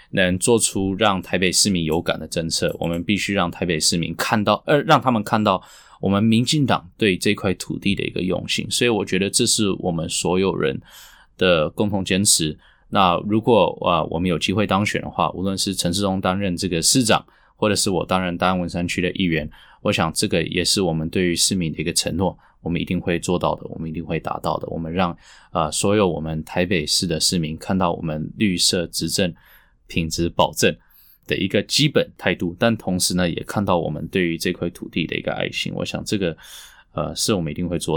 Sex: male